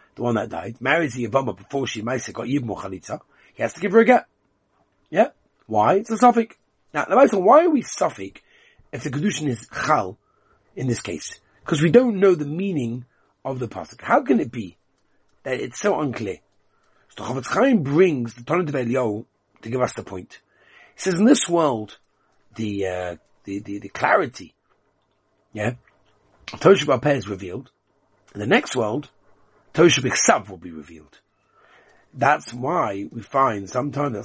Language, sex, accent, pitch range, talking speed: English, male, British, 105-145 Hz, 175 wpm